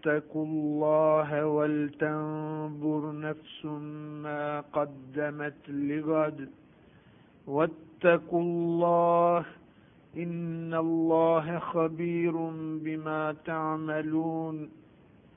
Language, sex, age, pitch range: Bulgarian, male, 50-69, 135-160 Hz